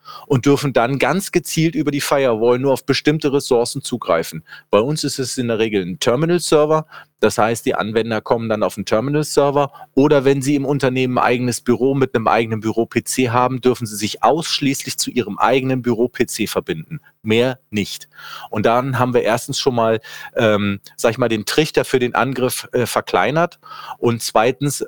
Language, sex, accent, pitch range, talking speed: German, male, German, 115-140 Hz, 180 wpm